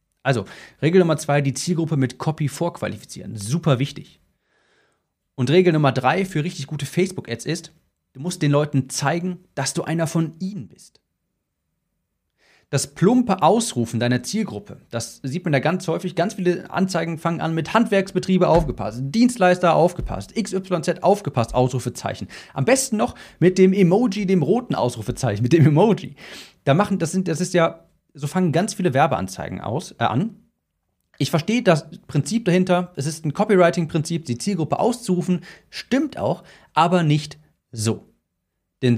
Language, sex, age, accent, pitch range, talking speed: German, male, 40-59, German, 130-180 Hz, 150 wpm